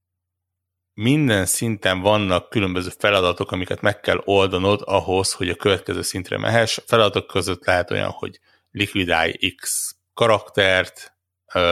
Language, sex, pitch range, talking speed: Hungarian, male, 90-110 Hz, 125 wpm